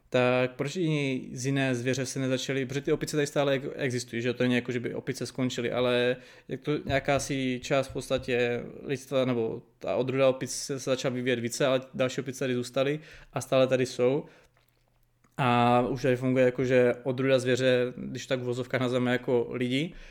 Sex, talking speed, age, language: male, 180 wpm, 20-39, Czech